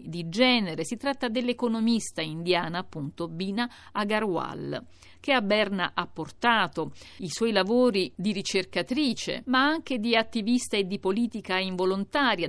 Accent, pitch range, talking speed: native, 170-230 Hz, 130 wpm